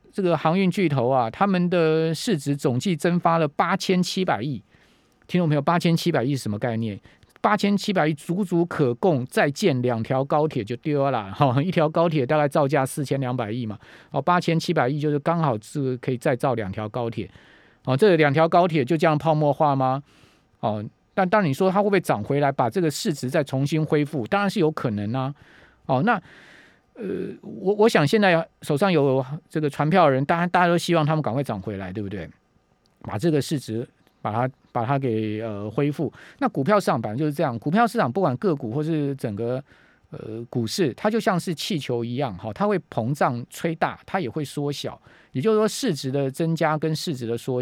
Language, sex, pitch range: Chinese, male, 130-175 Hz